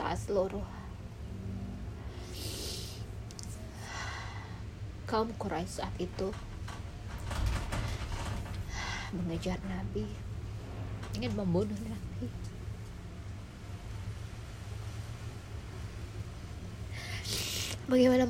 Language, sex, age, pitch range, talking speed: Indonesian, female, 20-39, 100-105 Hz, 35 wpm